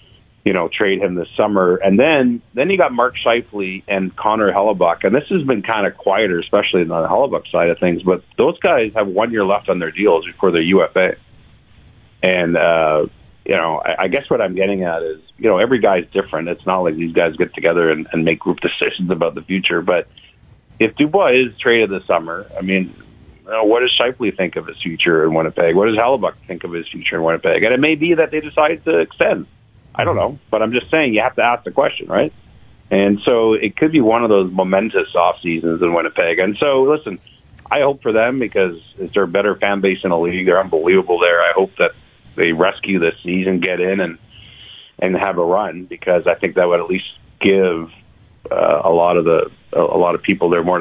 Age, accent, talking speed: 40-59, American, 230 wpm